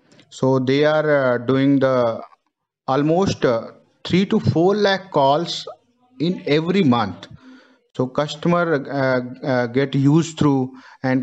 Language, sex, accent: English, male, Indian